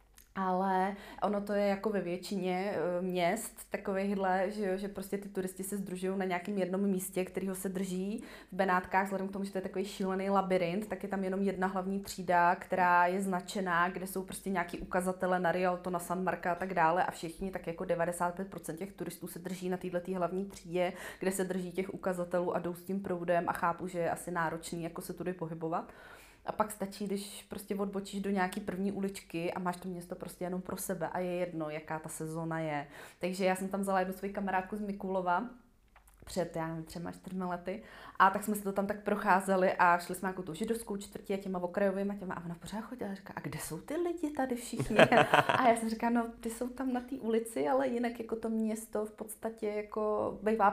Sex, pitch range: female, 175-200 Hz